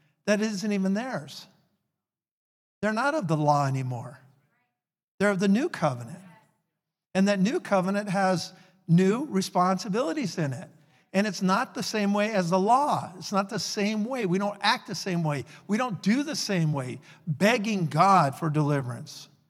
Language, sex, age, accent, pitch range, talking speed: English, male, 50-69, American, 165-215 Hz, 165 wpm